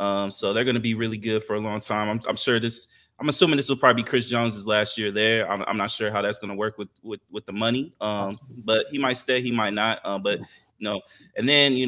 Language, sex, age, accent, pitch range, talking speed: English, male, 20-39, American, 105-125 Hz, 290 wpm